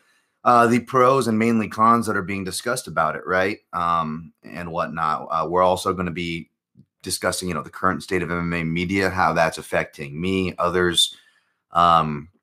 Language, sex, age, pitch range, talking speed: English, male, 30-49, 90-115 Hz, 180 wpm